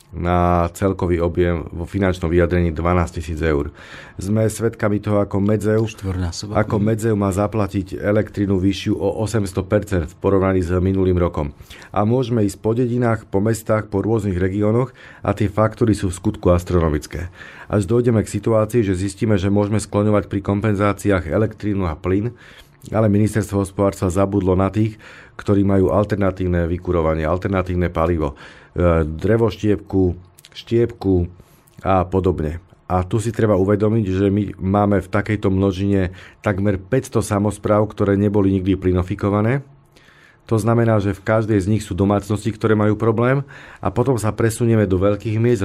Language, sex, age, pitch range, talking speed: Slovak, male, 40-59, 95-110 Hz, 145 wpm